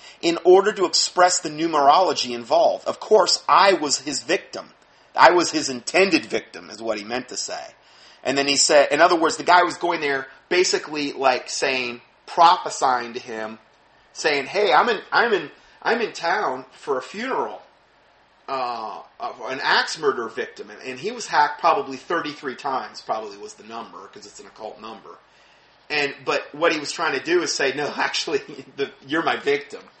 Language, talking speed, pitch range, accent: English, 185 wpm, 130-220 Hz, American